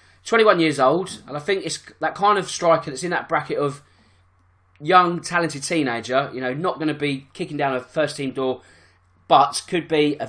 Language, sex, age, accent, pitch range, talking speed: English, male, 20-39, British, 130-165 Hz, 205 wpm